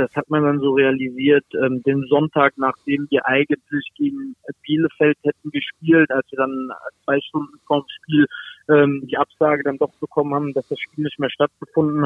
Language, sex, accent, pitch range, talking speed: German, male, German, 140-150 Hz, 175 wpm